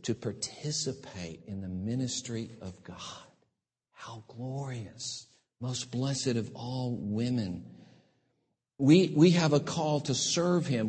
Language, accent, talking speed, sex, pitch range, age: English, American, 120 wpm, male, 130-185 Hz, 50-69